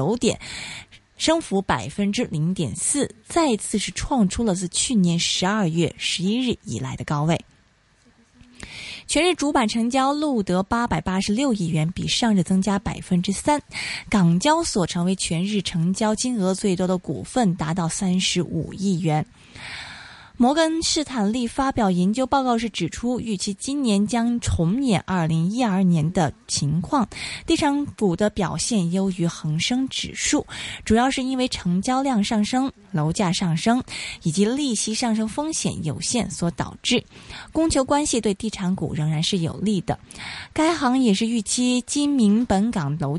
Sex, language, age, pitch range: female, Chinese, 20-39, 175-240 Hz